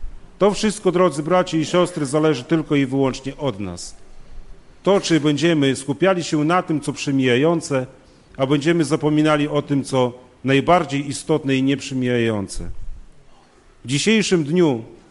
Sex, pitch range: male, 130-165 Hz